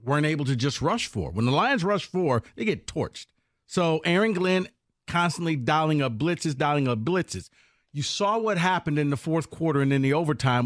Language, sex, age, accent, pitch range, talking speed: English, male, 50-69, American, 135-190 Hz, 205 wpm